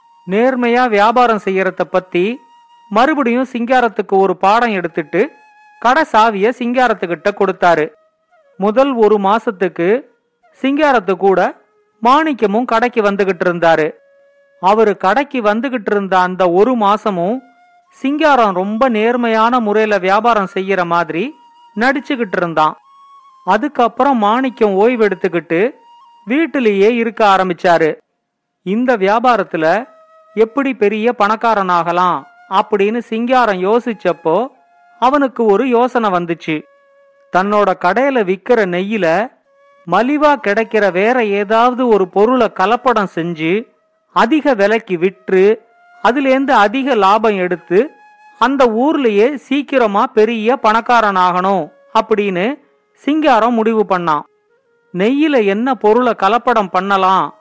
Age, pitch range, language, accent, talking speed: 40-59, 195-260 Hz, Tamil, native, 95 wpm